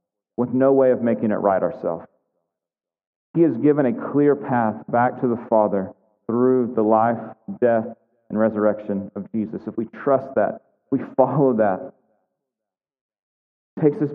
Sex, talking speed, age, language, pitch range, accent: male, 155 wpm, 40-59, English, 130-155 Hz, American